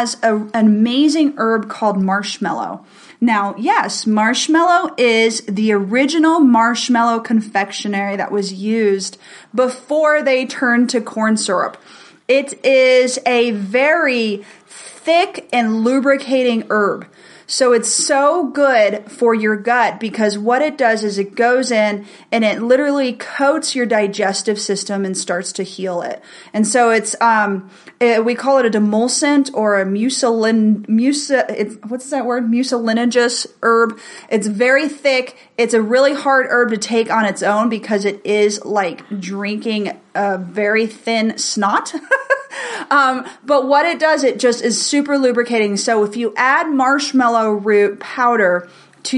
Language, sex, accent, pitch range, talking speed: English, female, American, 210-260 Hz, 140 wpm